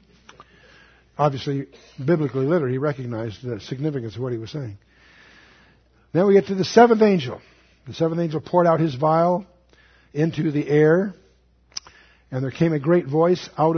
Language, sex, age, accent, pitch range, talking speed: Spanish, male, 60-79, American, 110-160 Hz, 155 wpm